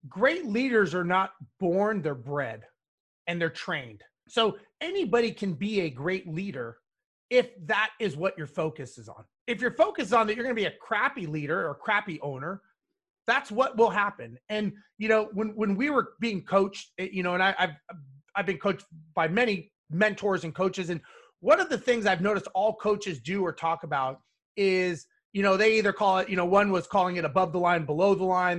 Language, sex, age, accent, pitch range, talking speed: English, male, 30-49, American, 175-225 Hz, 210 wpm